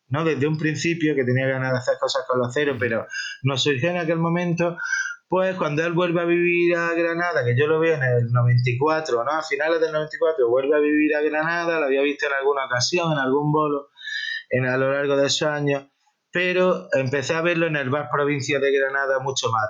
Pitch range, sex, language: 130-175 Hz, male, Spanish